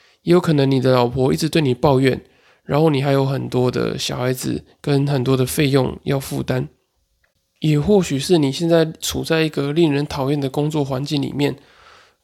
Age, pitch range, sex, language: 20-39, 135-160 Hz, male, Chinese